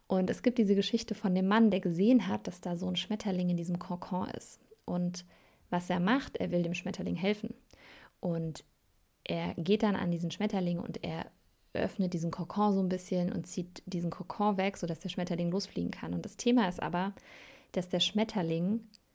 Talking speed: 195 wpm